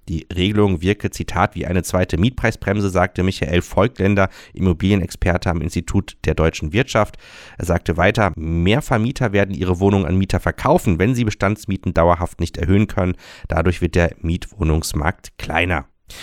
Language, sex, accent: German, male, German